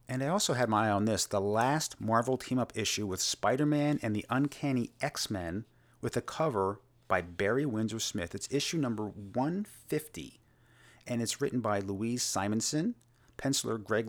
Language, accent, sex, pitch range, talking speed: English, American, male, 105-135 Hz, 160 wpm